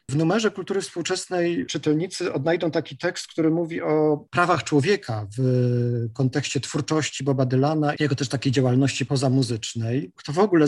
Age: 40-59